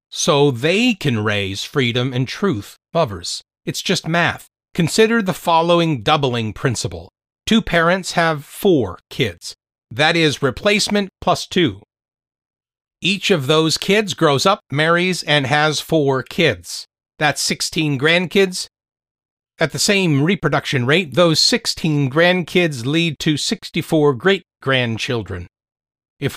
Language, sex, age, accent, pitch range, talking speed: English, male, 40-59, American, 130-170 Hz, 125 wpm